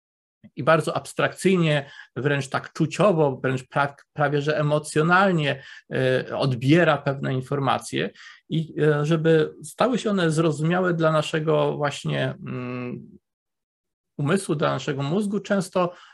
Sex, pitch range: male, 135-165 Hz